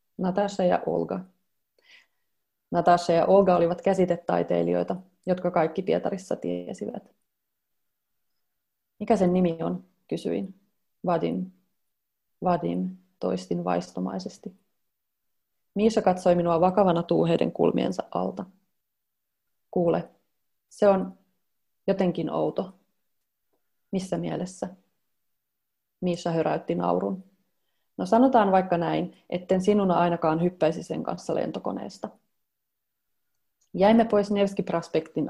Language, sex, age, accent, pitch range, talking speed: Finnish, female, 30-49, native, 170-190 Hz, 90 wpm